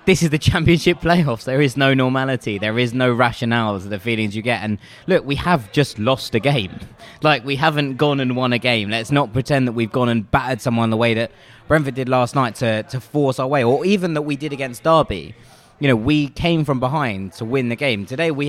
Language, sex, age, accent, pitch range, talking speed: English, male, 20-39, British, 115-145 Hz, 240 wpm